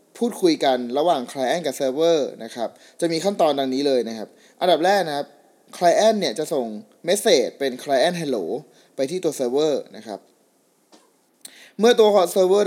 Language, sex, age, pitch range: Thai, male, 20-39, 135-175 Hz